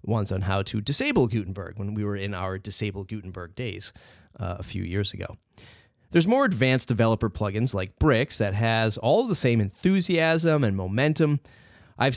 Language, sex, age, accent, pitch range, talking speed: English, male, 30-49, American, 100-140 Hz, 175 wpm